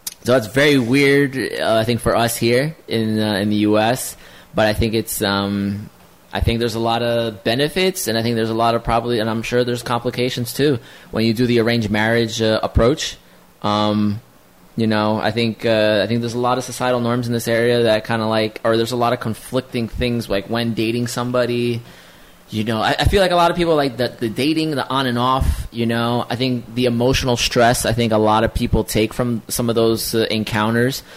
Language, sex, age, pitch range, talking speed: English, male, 20-39, 110-125 Hz, 230 wpm